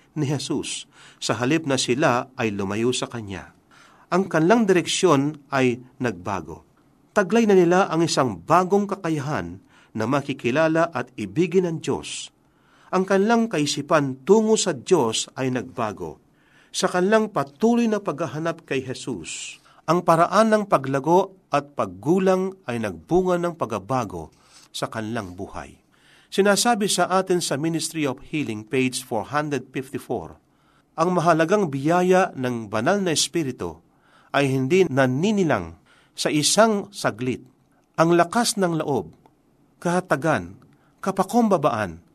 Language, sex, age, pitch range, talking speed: Filipino, male, 50-69, 125-180 Hz, 120 wpm